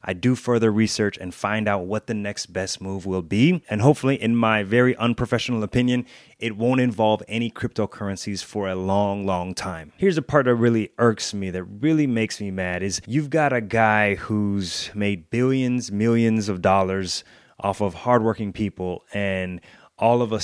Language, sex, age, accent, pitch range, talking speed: English, male, 30-49, American, 105-130 Hz, 180 wpm